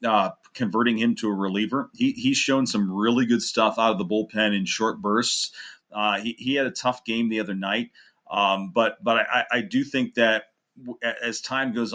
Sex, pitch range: male, 105-125 Hz